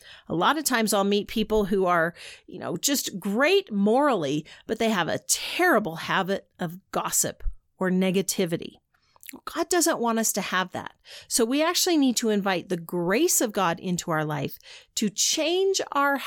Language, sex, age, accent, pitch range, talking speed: English, female, 40-59, American, 185-270 Hz, 175 wpm